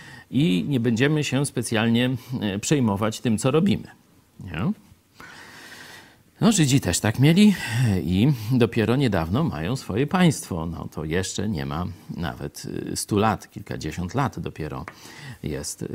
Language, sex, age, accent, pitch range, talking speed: Polish, male, 40-59, native, 100-140 Hz, 125 wpm